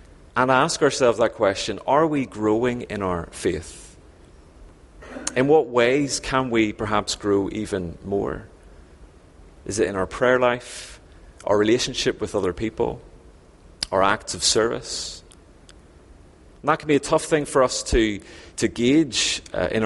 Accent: British